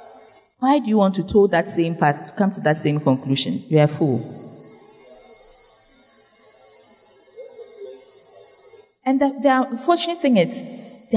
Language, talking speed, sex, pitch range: English, 140 wpm, female, 195-275 Hz